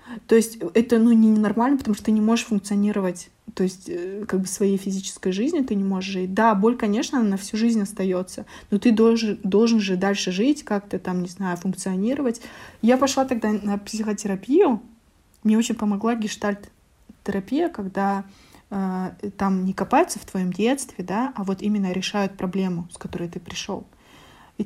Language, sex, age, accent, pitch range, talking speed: Russian, female, 20-39, native, 190-225 Hz, 170 wpm